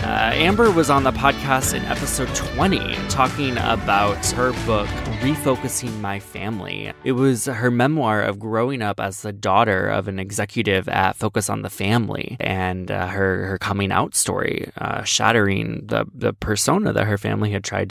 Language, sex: English, male